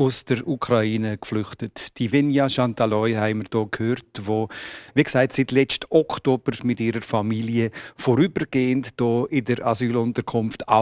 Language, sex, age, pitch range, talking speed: German, male, 50-69, 120-145 Hz, 140 wpm